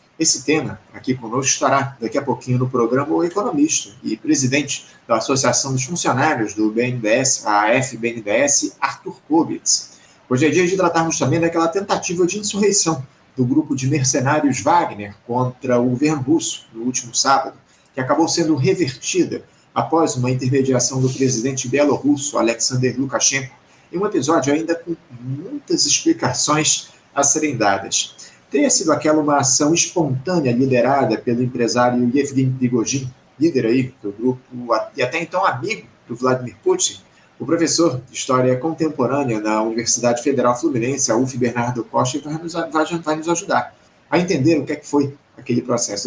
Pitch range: 125-160 Hz